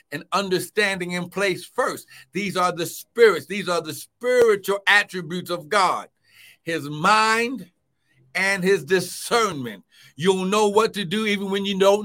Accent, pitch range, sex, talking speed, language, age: American, 135-200 Hz, male, 150 wpm, English, 60-79